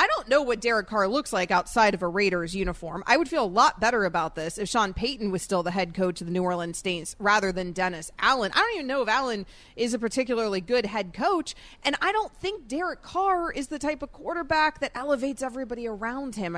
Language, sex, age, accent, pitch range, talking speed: English, female, 30-49, American, 195-265 Hz, 240 wpm